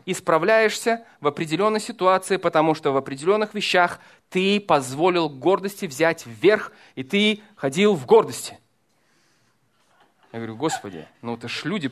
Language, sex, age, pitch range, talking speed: Russian, male, 20-39, 140-210 Hz, 130 wpm